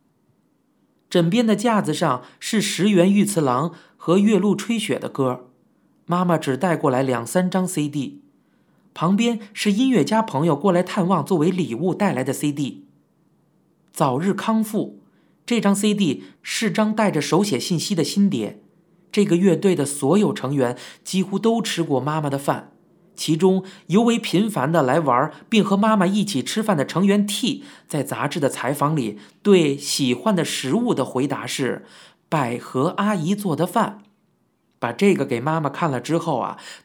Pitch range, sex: 145-200 Hz, male